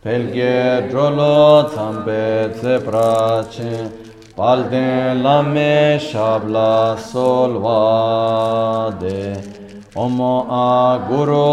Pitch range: 110-145 Hz